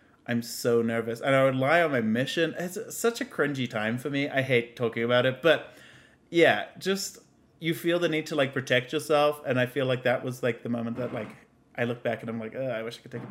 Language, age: English, 30-49